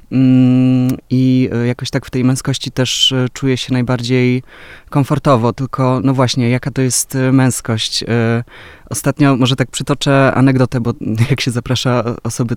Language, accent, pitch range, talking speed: Polish, native, 120-135 Hz, 135 wpm